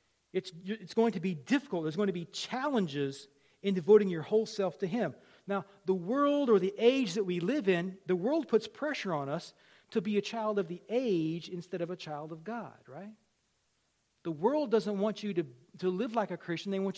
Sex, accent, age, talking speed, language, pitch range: male, American, 40-59, 215 wpm, English, 150-220 Hz